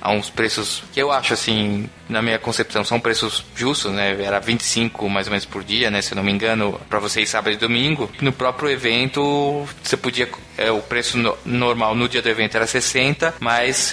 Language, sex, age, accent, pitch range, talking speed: Portuguese, male, 20-39, Brazilian, 110-130 Hz, 210 wpm